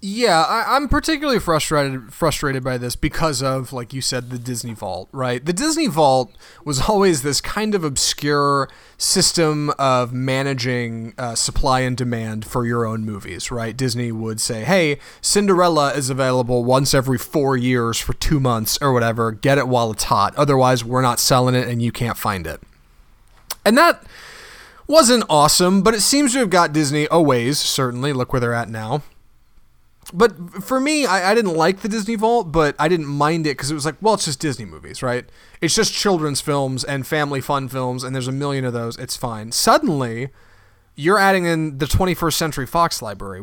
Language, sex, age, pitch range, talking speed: English, male, 30-49, 125-170 Hz, 190 wpm